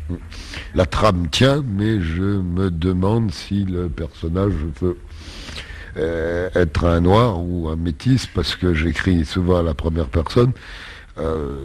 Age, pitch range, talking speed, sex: 60-79, 75-95 Hz, 140 wpm, male